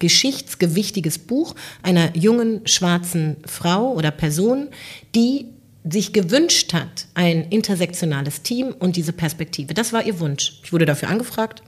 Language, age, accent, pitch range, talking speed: German, 40-59, German, 155-210 Hz, 135 wpm